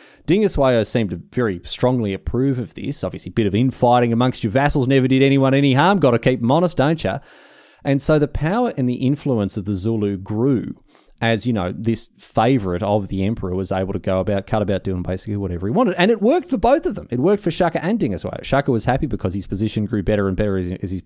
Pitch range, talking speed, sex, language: 100-140 Hz, 240 wpm, male, English